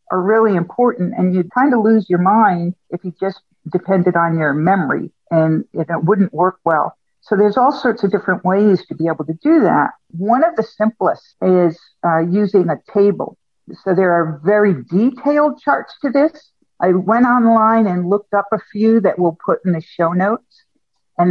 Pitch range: 175-230 Hz